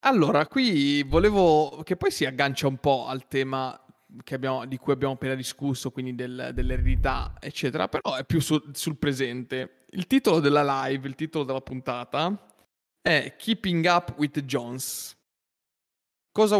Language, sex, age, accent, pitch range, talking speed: Italian, male, 20-39, native, 130-165 Hz, 135 wpm